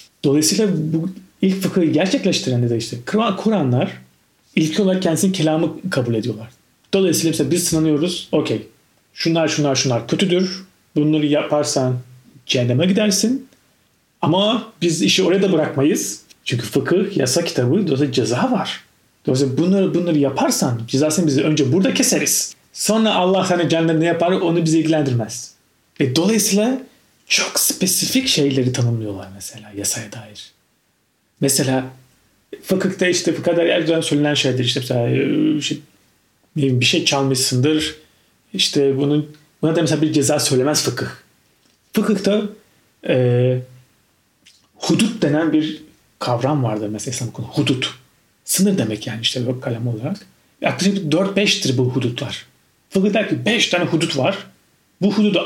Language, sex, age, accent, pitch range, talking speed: Turkish, male, 40-59, native, 130-180 Hz, 125 wpm